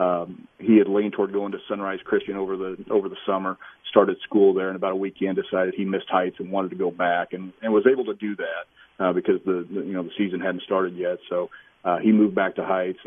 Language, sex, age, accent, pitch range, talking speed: English, male, 40-59, American, 95-110 Hz, 255 wpm